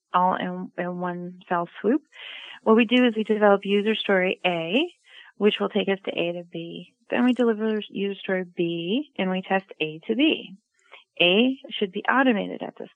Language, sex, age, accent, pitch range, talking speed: English, female, 30-49, American, 180-235 Hz, 190 wpm